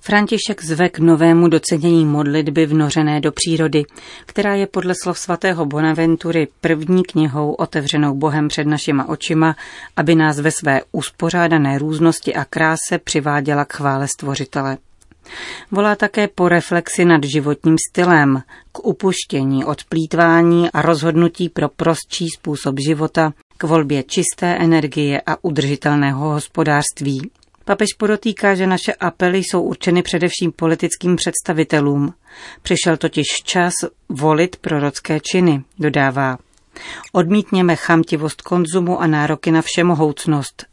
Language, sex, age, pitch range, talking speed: Czech, female, 40-59, 150-175 Hz, 120 wpm